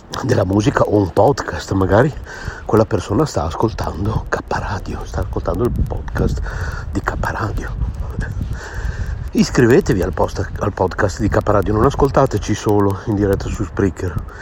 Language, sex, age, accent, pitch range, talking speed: Italian, male, 60-79, native, 90-110 Hz, 130 wpm